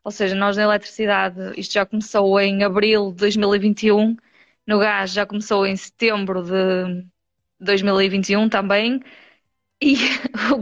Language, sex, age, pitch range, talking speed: Portuguese, female, 20-39, 195-220 Hz, 130 wpm